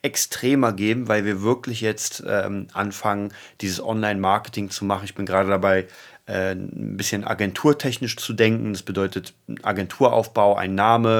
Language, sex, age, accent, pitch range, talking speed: German, male, 30-49, German, 95-120 Hz, 145 wpm